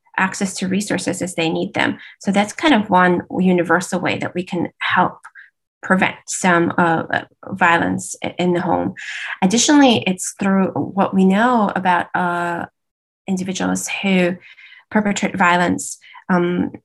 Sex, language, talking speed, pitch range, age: female, English, 135 wpm, 180-225 Hz, 20-39